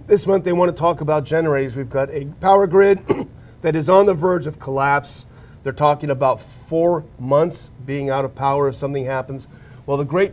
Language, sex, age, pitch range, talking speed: English, male, 40-59, 130-155 Hz, 205 wpm